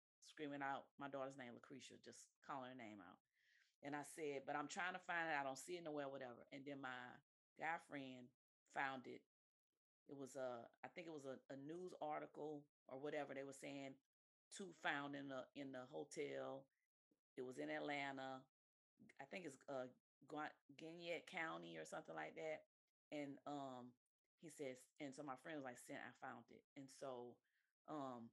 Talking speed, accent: 185 wpm, American